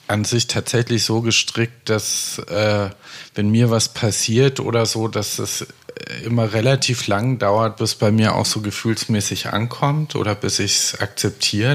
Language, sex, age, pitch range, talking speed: German, male, 50-69, 105-125 Hz, 160 wpm